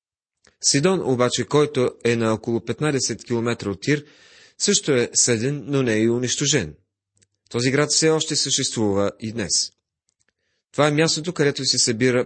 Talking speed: 150 wpm